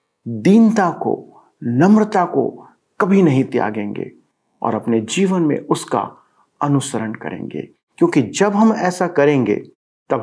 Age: 50-69